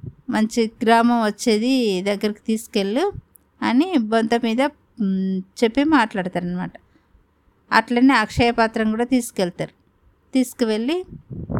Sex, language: female, Telugu